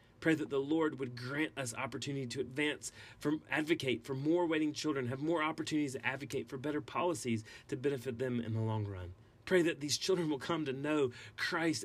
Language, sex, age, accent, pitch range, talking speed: English, male, 30-49, American, 120-150 Hz, 195 wpm